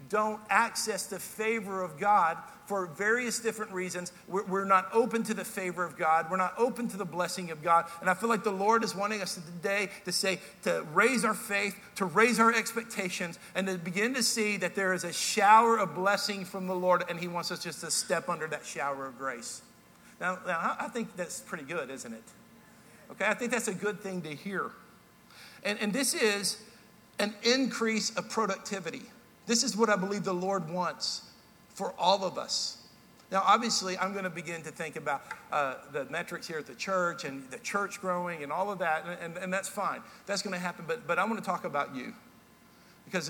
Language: English